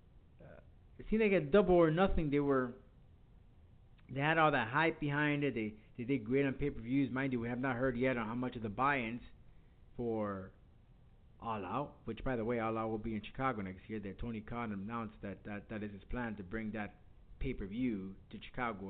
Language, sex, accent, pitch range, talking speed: English, male, American, 115-155 Hz, 210 wpm